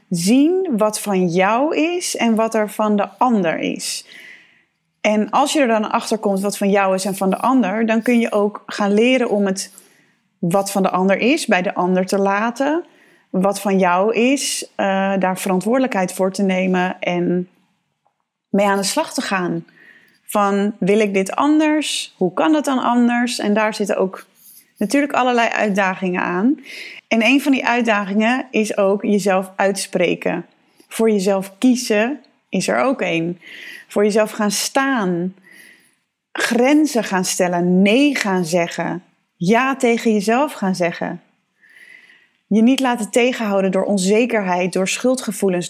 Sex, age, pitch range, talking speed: female, 20-39, 190-250 Hz, 155 wpm